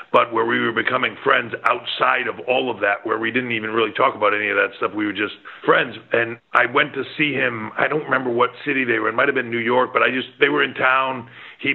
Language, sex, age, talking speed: English, male, 50-69, 270 wpm